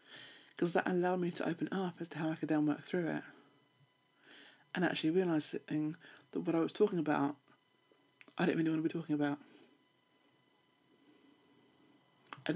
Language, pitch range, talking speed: English, 145-175 Hz, 160 wpm